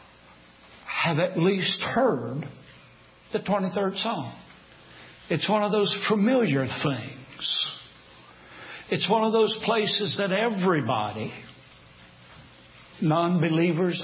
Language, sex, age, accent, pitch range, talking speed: English, male, 60-79, American, 135-195 Hz, 90 wpm